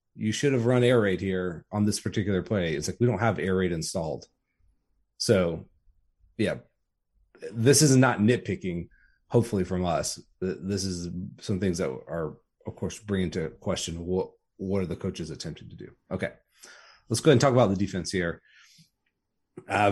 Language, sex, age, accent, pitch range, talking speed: English, male, 30-49, American, 90-115 Hz, 175 wpm